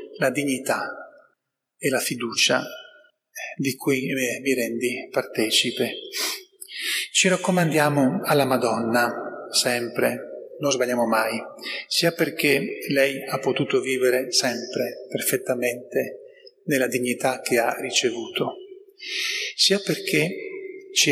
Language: Italian